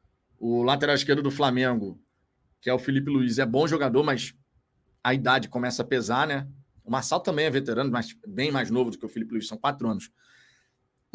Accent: Brazilian